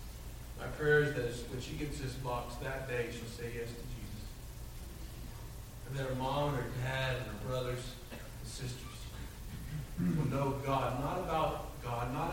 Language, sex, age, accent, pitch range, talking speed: English, male, 50-69, American, 120-150 Hz, 155 wpm